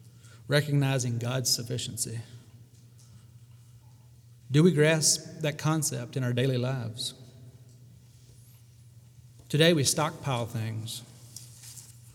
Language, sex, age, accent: English, male, 40-59, American